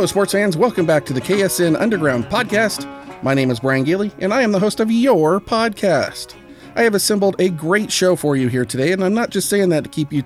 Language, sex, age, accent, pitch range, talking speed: English, male, 40-59, American, 135-195 Hz, 240 wpm